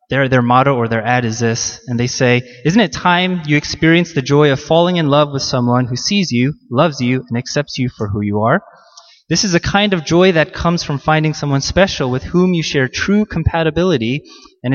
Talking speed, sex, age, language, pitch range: 220 wpm, male, 20-39, English, 130-165 Hz